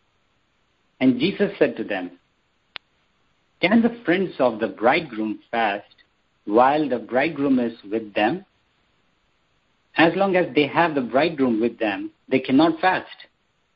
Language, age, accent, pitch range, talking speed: English, 60-79, Indian, 115-170 Hz, 130 wpm